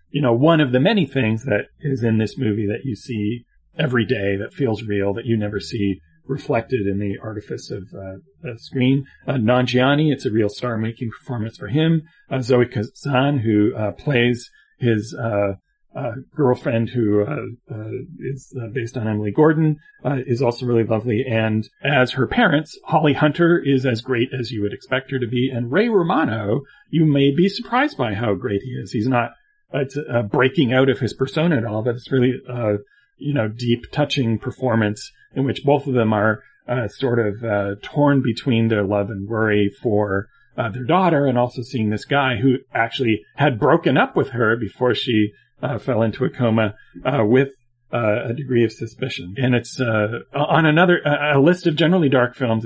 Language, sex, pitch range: English, male, 110-140 Hz